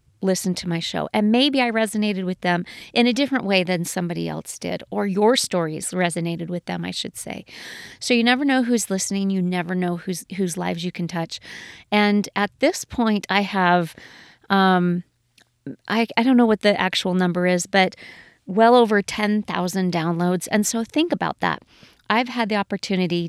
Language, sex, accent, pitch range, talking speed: English, female, American, 175-205 Hz, 185 wpm